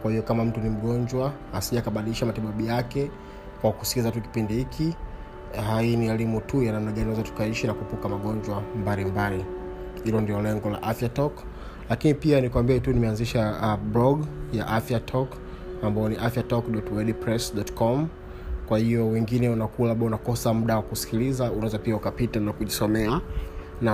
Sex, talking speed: male, 145 wpm